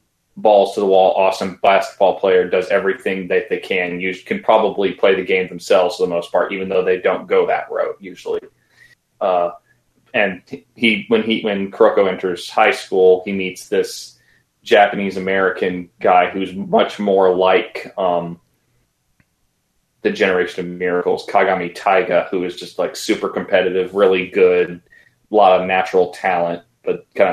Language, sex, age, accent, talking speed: English, male, 30-49, American, 160 wpm